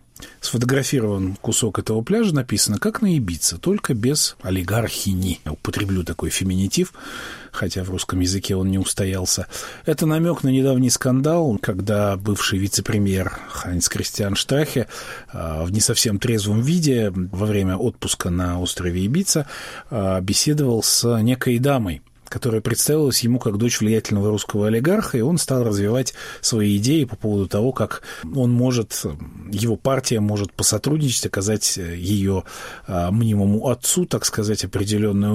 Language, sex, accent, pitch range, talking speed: Russian, male, native, 100-130 Hz, 135 wpm